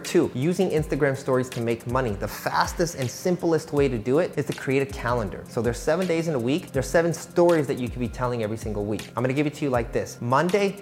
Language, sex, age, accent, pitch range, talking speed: English, male, 30-49, American, 130-175 Hz, 265 wpm